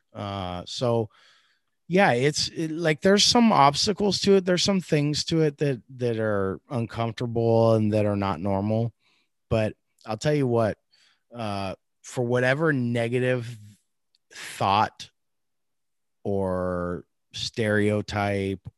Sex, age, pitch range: male, 30-49, 85-110 Hz